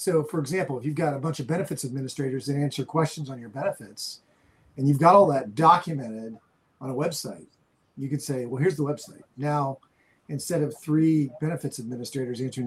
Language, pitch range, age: English, 135-160 Hz, 40-59